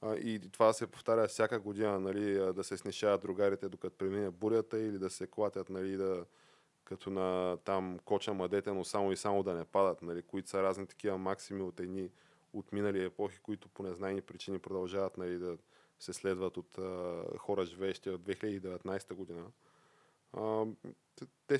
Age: 20-39